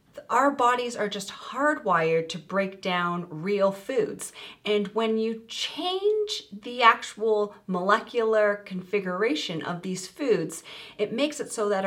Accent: American